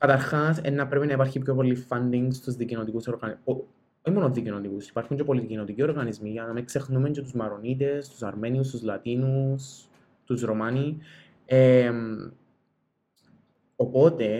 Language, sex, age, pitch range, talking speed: Greek, male, 20-39, 120-140 Hz, 130 wpm